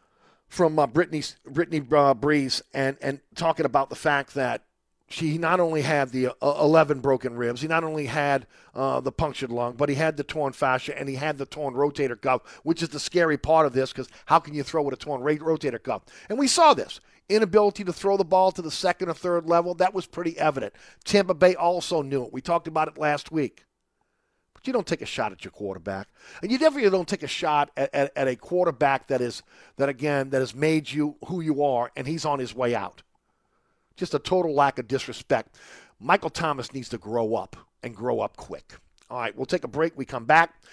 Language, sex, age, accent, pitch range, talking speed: English, male, 50-69, American, 135-170 Hz, 225 wpm